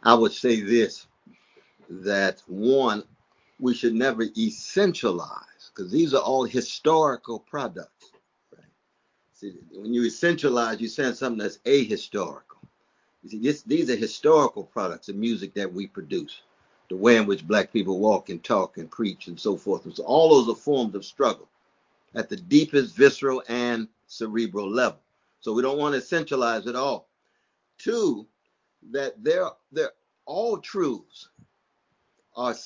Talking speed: 150 wpm